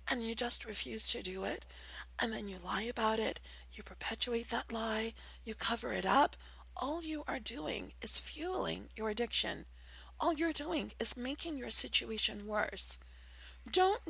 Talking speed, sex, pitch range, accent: 160 wpm, female, 210-320 Hz, American